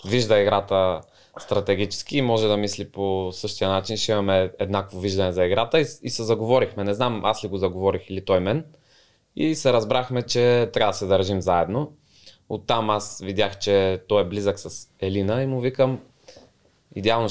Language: Bulgarian